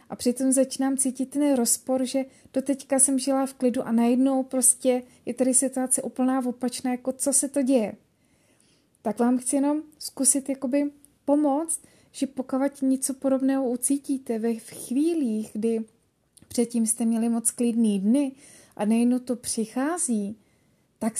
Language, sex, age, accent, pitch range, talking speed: Czech, female, 30-49, native, 230-275 Hz, 145 wpm